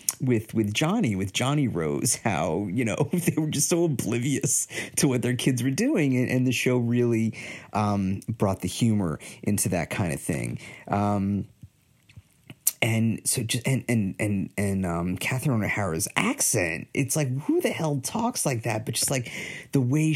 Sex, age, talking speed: male, 40-59, 175 wpm